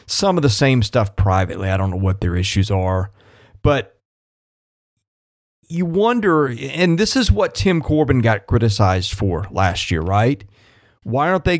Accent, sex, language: American, male, English